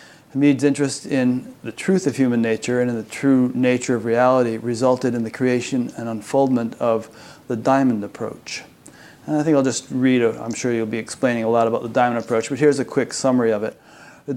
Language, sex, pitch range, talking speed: English, male, 115-140 Hz, 215 wpm